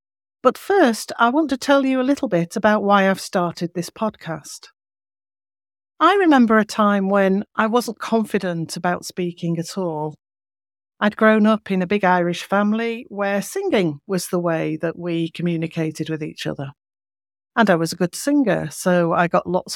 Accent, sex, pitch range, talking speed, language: British, female, 170-220 Hz, 175 wpm, English